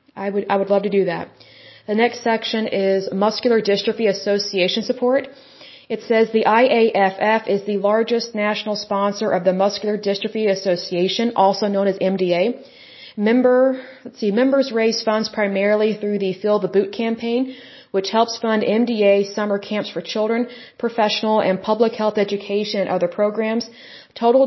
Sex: female